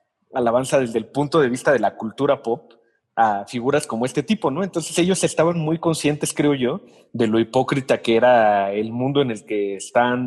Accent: Mexican